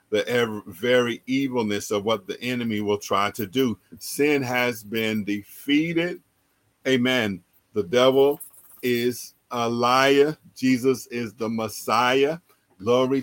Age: 50-69